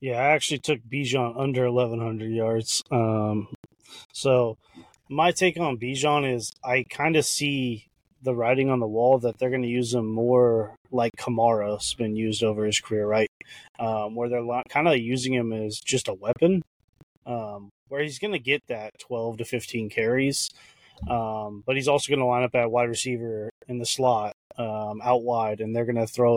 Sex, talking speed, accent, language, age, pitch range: male, 190 wpm, American, English, 20-39, 110-135 Hz